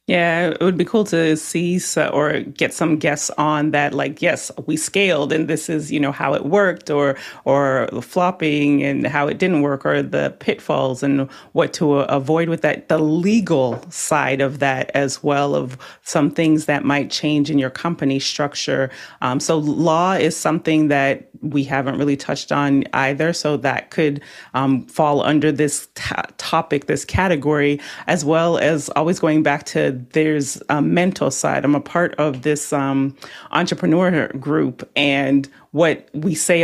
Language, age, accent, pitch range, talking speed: English, 30-49, American, 140-160 Hz, 170 wpm